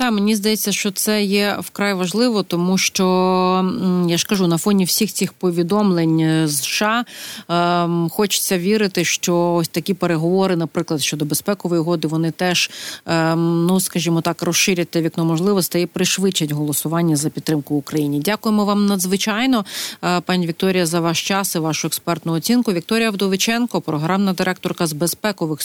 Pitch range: 170-205 Hz